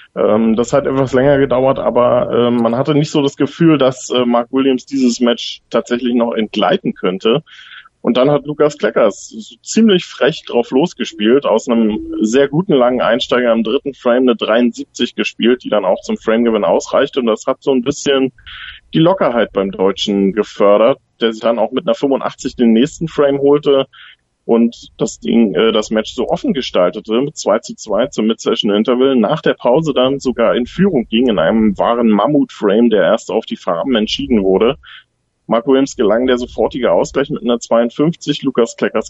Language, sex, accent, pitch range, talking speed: German, male, German, 115-140 Hz, 175 wpm